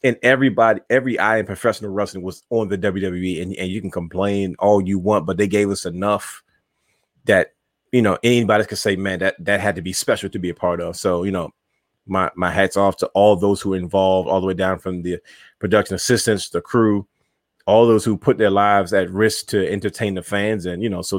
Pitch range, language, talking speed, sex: 90-105 Hz, English, 230 wpm, male